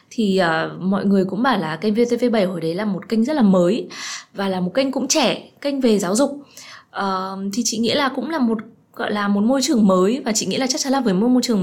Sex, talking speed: female, 270 wpm